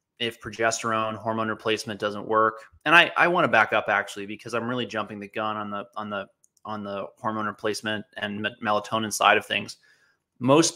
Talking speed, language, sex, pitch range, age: 165 wpm, English, male, 105-120 Hz, 20-39